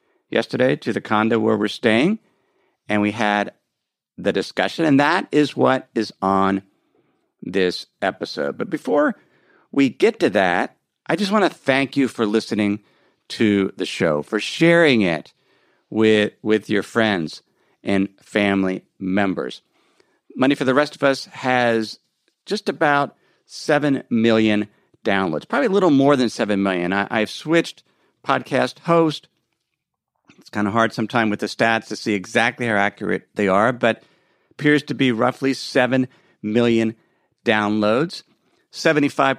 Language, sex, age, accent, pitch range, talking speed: English, male, 50-69, American, 105-145 Hz, 140 wpm